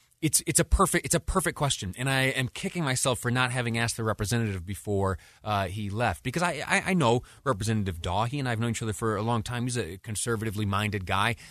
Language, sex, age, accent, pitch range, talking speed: English, male, 30-49, American, 100-135 Hz, 235 wpm